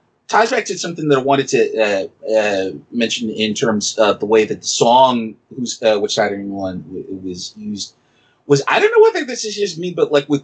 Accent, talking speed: American, 220 wpm